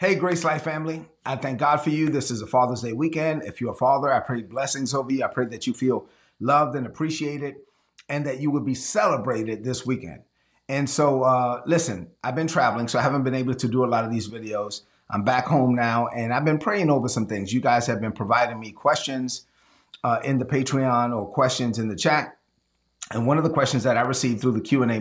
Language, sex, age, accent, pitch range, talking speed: English, male, 30-49, American, 120-140 Hz, 235 wpm